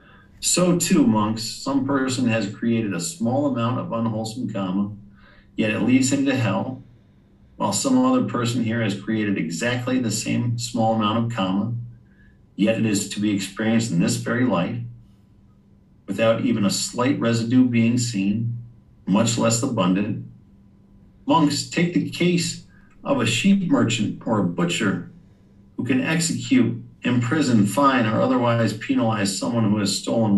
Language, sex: English, male